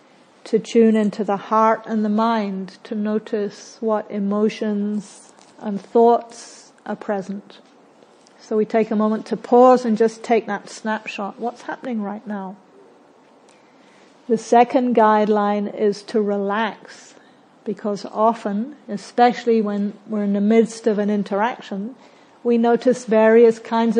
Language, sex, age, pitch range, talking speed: English, female, 50-69, 205-230 Hz, 135 wpm